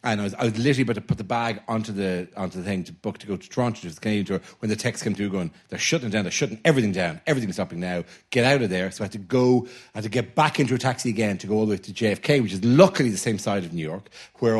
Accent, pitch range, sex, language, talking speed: Irish, 100-120 Hz, male, English, 320 wpm